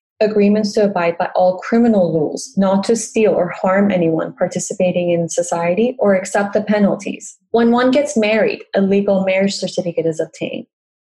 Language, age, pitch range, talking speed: English, 20-39, 175-225 Hz, 165 wpm